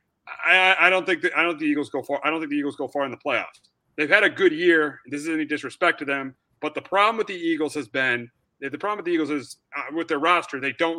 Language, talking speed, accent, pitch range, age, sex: English, 290 wpm, American, 140-175 Hz, 30-49, male